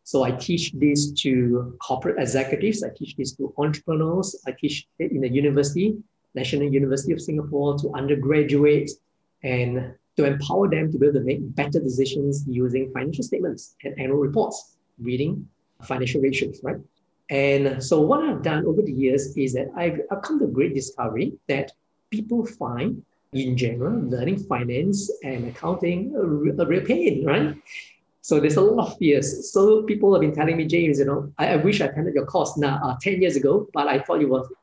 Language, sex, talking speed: English, male, 190 wpm